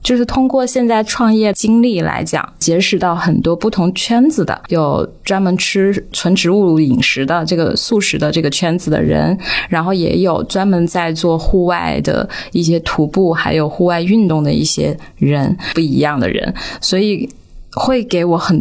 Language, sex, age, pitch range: Chinese, female, 20-39, 165-205 Hz